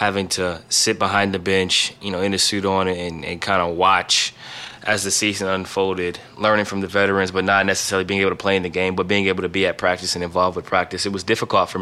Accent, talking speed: American, 260 wpm